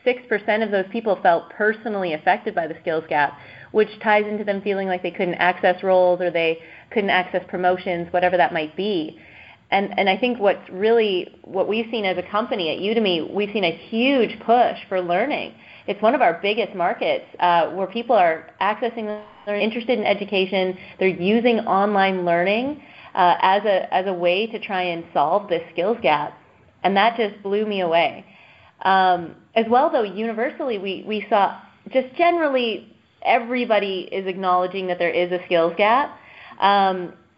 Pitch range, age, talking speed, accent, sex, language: 180-225 Hz, 30-49, 175 wpm, American, female, English